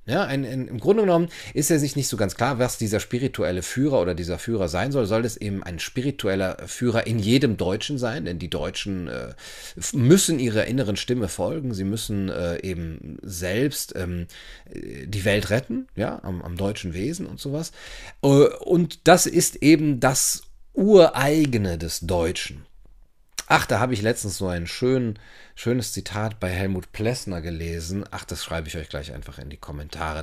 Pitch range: 85-120 Hz